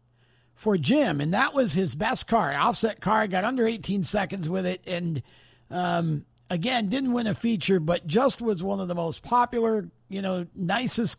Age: 50-69